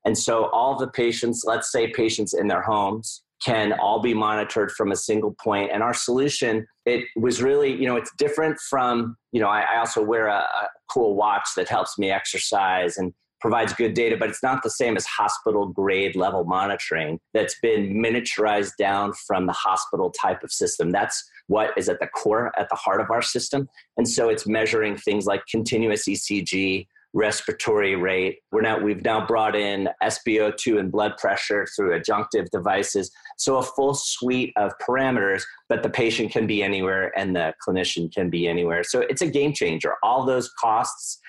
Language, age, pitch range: English, 30-49, 100-120 Hz